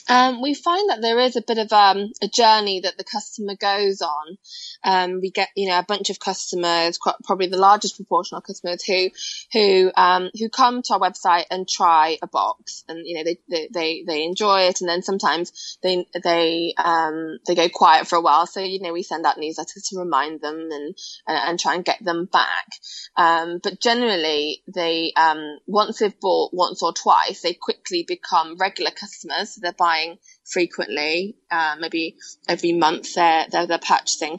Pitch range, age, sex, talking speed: 170-205 Hz, 20-39, female, 195 wpm